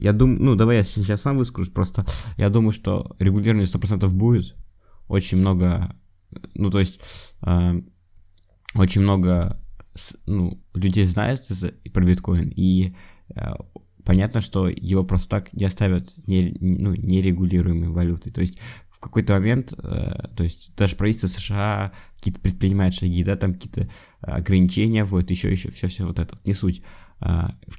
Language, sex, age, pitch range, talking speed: Russian, male, 20-39, 90-100 Hz, 150 wpm